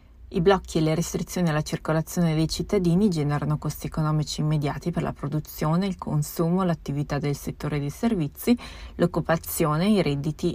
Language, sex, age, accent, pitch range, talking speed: Italian, female, 30-49, native, 145-175 Hz, 150 wpm